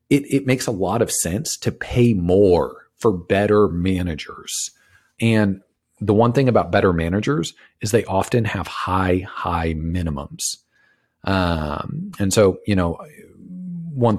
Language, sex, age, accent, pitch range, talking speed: English, male, 40-59, American, 85-110 Hz, 140 wpm